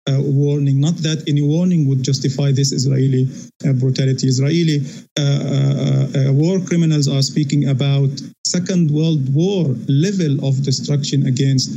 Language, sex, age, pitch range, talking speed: English, male, 50-69, 140-165 Hz, 145 wpm